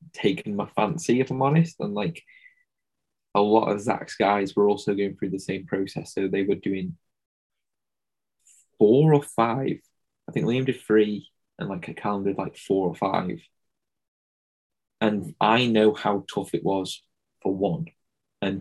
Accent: British